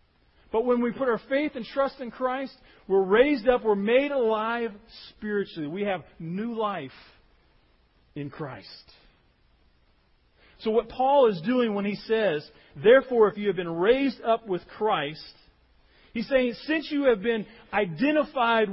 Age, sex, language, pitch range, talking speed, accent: 40-59, male, English, 170-245 Hz, 150 wpm, American